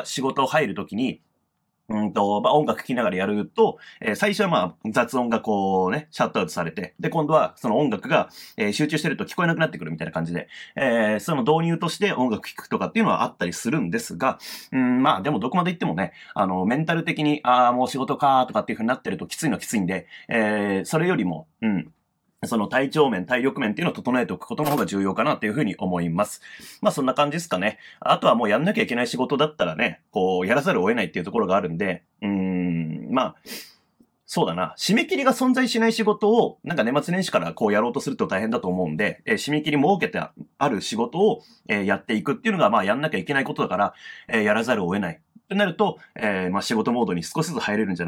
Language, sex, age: Japanese, male, 30-49